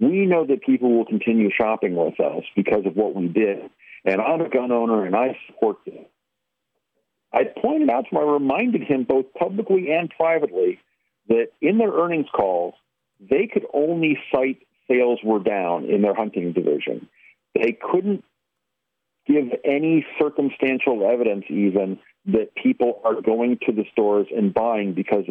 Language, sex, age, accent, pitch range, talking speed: English, male, 50-69, American, 110-165 Hz, 160 wpm